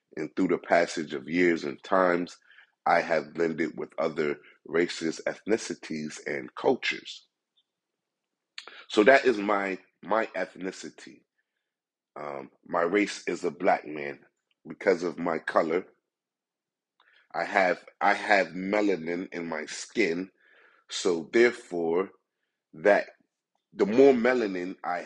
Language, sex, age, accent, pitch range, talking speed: English, male, 30-49, American, 85-110 Hz, 115 wpm